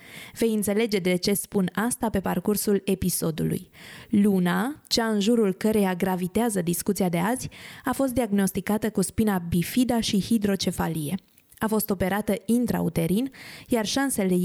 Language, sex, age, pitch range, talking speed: Romanian, female, 20-39, 190-235 Hz, 135 wpm